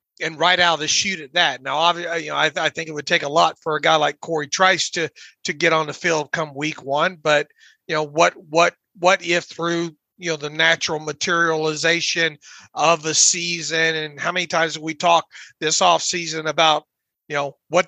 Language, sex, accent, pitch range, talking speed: English, male, American, 155-175 Hz, 220 wpm